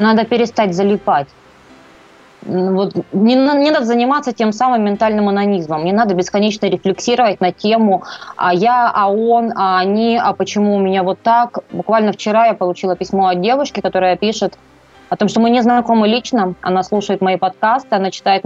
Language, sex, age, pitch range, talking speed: Russian, female, 20-39, 185-220 Hz, 170 wpm